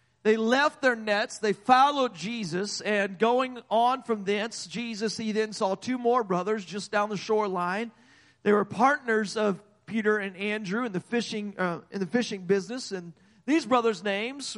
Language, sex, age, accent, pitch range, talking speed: English, male, 40-59, American, 195-240 Hz, 175 wpm